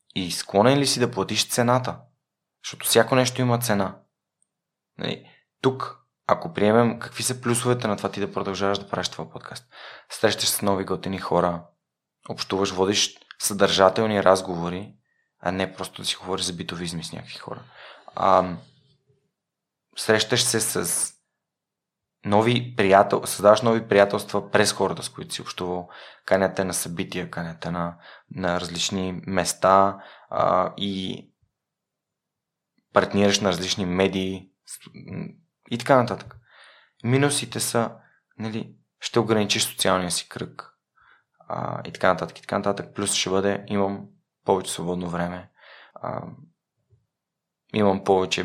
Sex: male